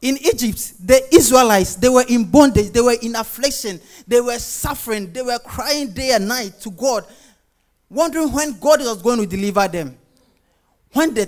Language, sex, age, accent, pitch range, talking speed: English, male, 30-49, Nigerian, 190-250 Hz, 175 wpm